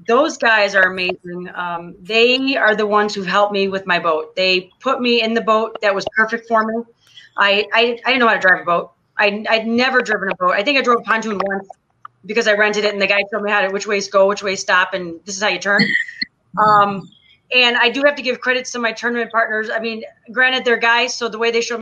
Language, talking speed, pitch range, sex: English, 260 wpm, 195-235 Hz, female